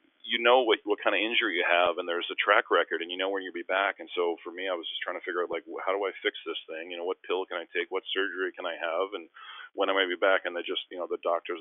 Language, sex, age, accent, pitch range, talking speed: English, male, 40-59, American, 320-440 Hz, 330 wpm